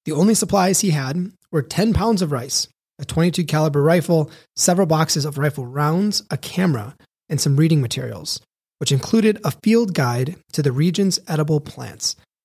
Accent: American